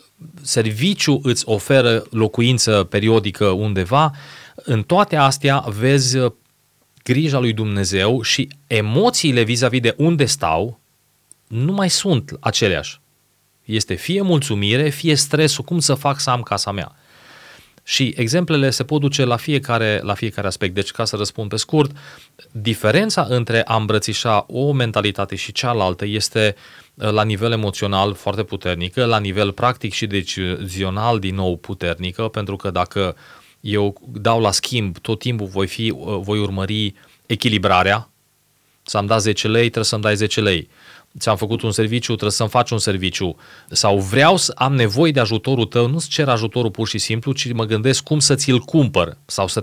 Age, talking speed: 30-49, 155 wpm